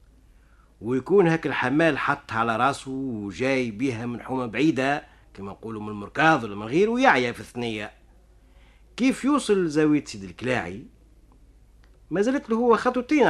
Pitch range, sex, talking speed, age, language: 110-170 Hz, male, 135 wpm, 50-69, Arabic